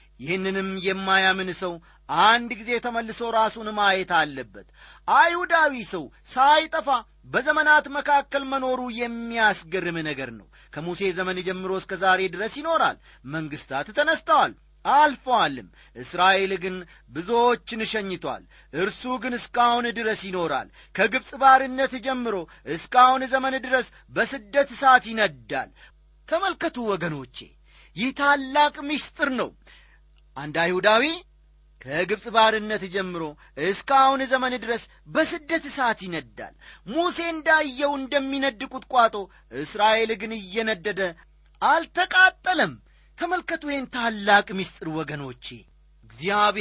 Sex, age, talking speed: male, 30-49, 95 wpm